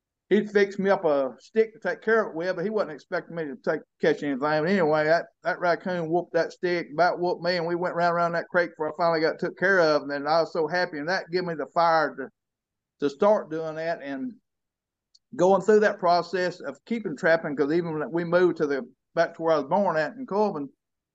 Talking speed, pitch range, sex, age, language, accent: 245 wpm, 155-180 Hz, male, 50-69, English, American